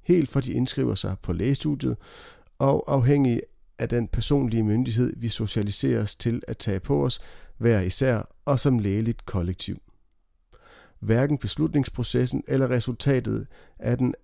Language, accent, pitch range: Danish, native, 105-135 Hz